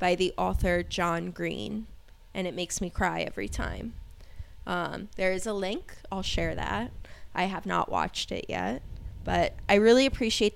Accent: American